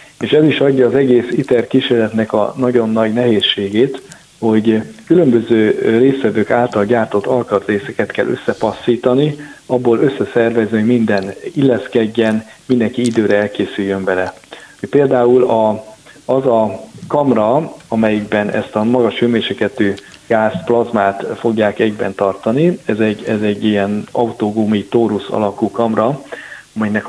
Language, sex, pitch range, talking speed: Hungarian, male, 105-125 Hz, 115 wpm